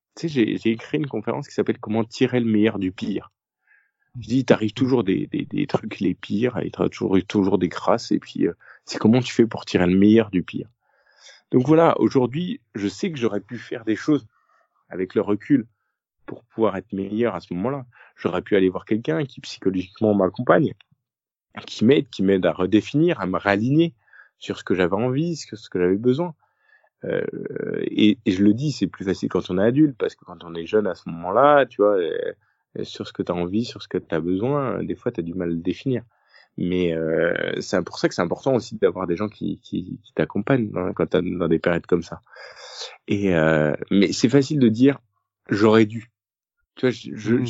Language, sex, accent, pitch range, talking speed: French, male, French, 95-130 Hz, 220 wpm